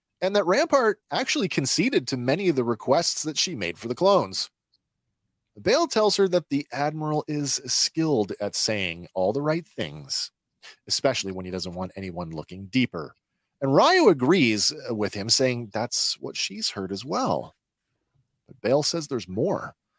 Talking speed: 165 wpm